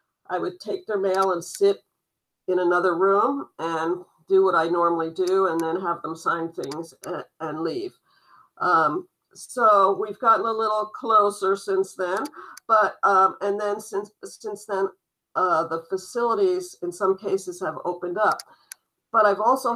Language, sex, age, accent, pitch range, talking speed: English, female, 50-69, American, 185-225 Hz, 160 wpm